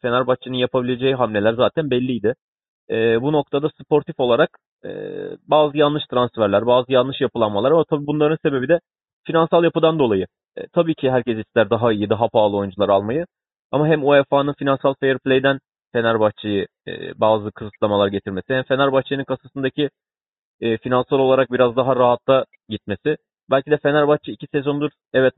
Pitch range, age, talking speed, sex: 115-140 Hz, 30-49, 145 wpm, male